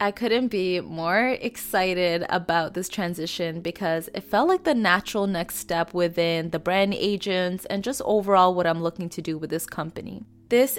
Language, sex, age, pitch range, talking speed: English, female, 20-39, 170-200 Hz, 180 wpm